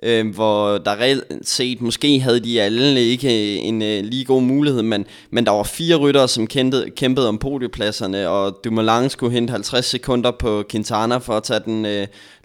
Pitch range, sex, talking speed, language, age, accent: 105-130 Hz, male, 200 wpm, Danish, 20-39, native